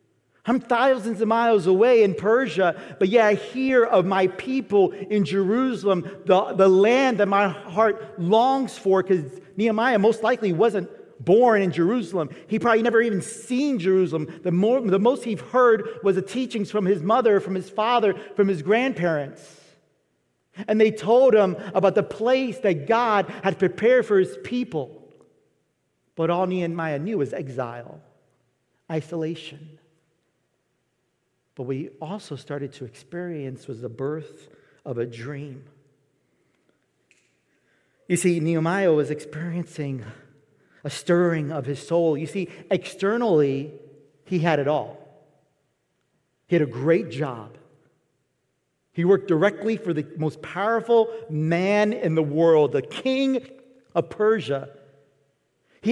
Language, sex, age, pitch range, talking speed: English, male, 40-59, 150-220 Hz, 135 wpm